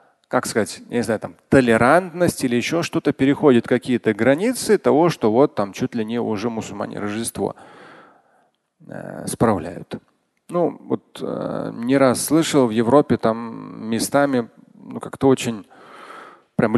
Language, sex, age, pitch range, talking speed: Russian, male, 30-49, 110-145 Hz, 135 wpm